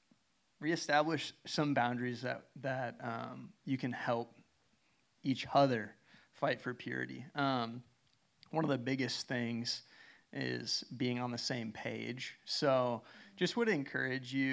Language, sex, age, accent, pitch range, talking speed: English, male, 30-49, American, 115-135 Hz, 130 wpm